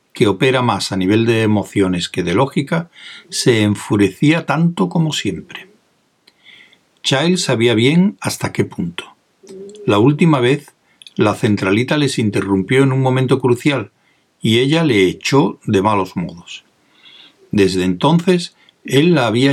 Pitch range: 105-155 Hz